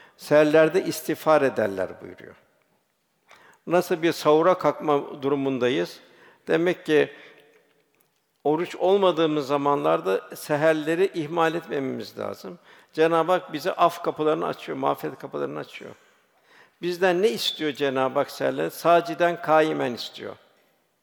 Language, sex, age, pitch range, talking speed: Turkish, male, 60-79, 150-170 Hz, 105 wpm